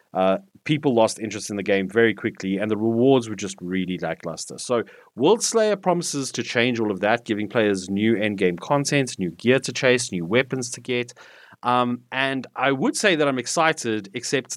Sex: male